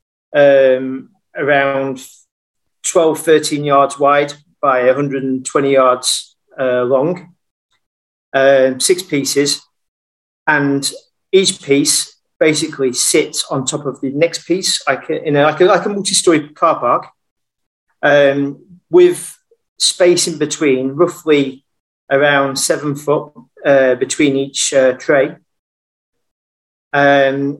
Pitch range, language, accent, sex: 130-155 Hz, English, British, male